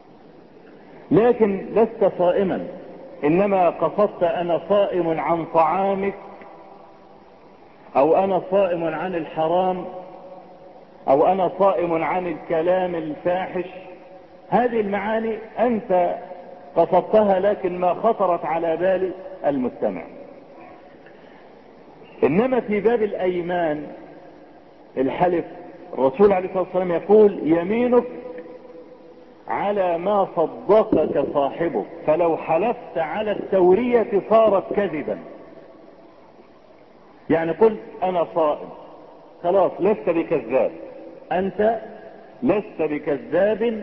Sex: male